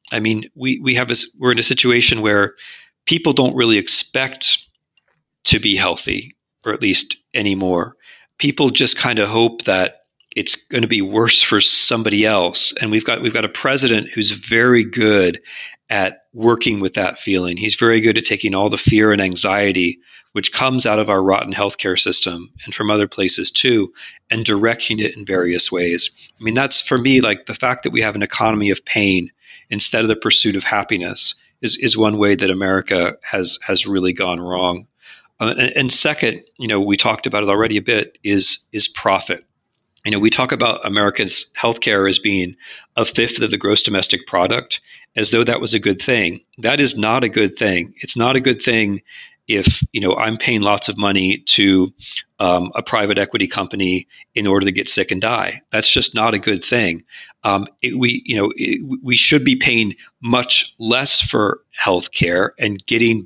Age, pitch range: 40-59, 100-120 Hz